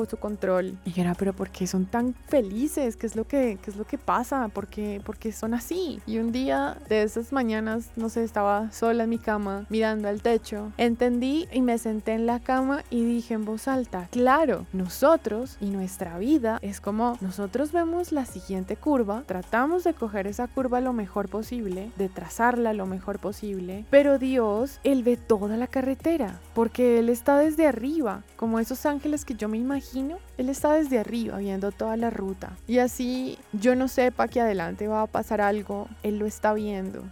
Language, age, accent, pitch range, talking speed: Spanish, 20-39, Colombian, 200-245 Hz, 195 wpm